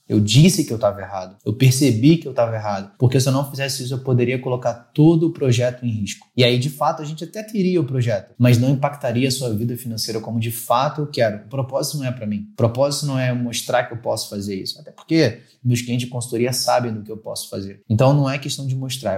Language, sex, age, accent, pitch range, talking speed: Portuguese, male, 20-39, Brazilian, 115-140 Hz, 255 wpm